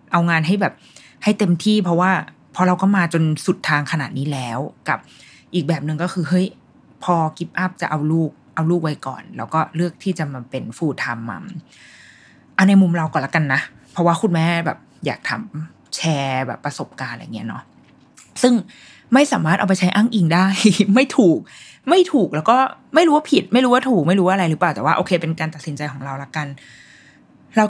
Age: 20-39